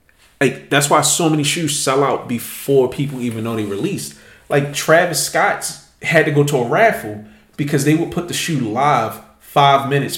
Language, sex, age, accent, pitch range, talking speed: English, male, 30-49, American, 110-150 Hz, 190 wpm